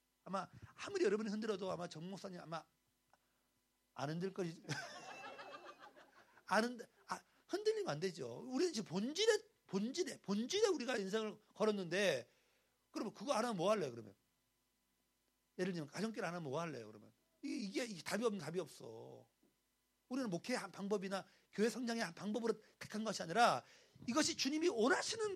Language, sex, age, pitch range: Korean, male, 40-59, 175-280 Hz